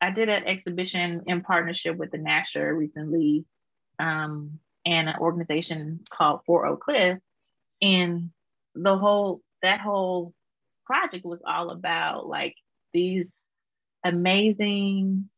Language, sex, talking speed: English, female, 115 wpm